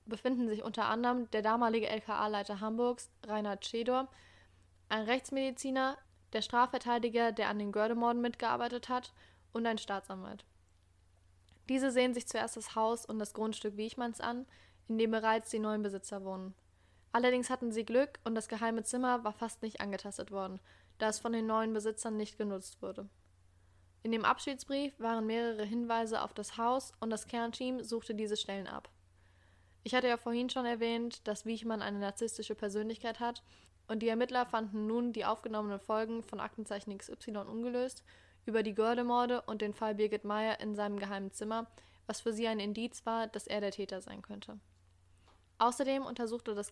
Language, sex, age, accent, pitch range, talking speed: German, female, 10-29, German, 205-235 Hz, 165 wpm